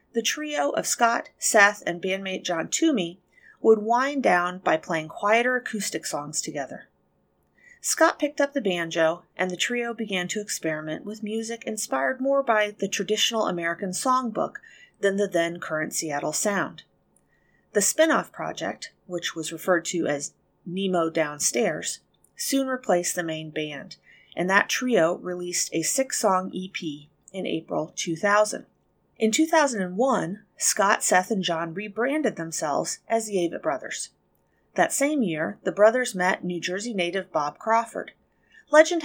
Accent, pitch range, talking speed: American, 170-235 Hz, 140 wpm